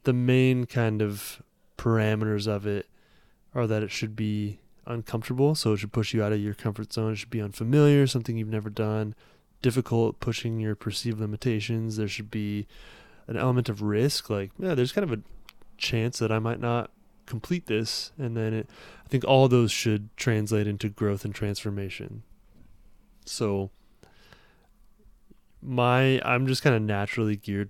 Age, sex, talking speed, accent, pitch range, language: 20-39, male, 165 wpm, American, 105-125 Hz, English